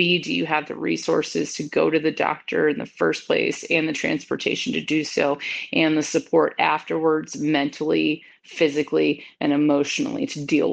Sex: female